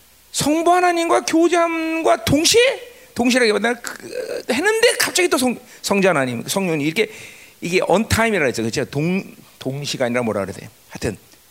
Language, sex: Korean, male